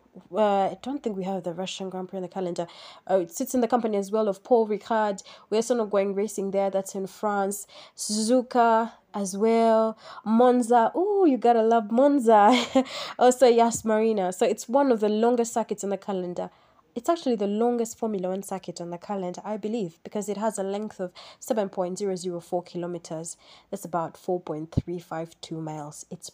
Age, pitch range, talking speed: 20-39, 185-230 Hz, 205 wpm